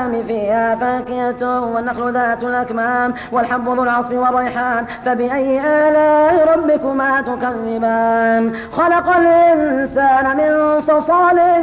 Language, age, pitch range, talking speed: Arabic, 30-49, 240-300 Hz, 85 wpm